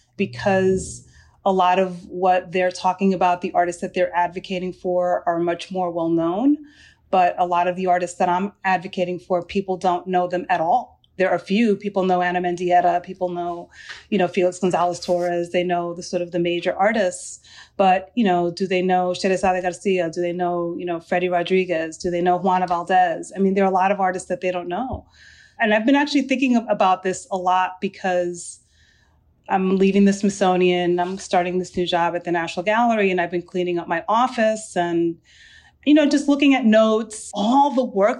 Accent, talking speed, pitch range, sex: American, 200 wpm, 175-205 Hz, female